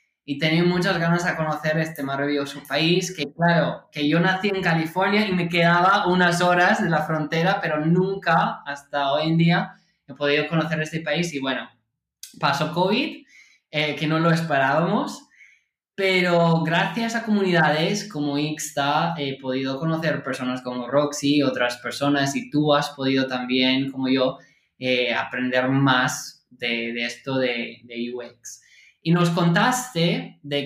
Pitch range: 145-180 Hz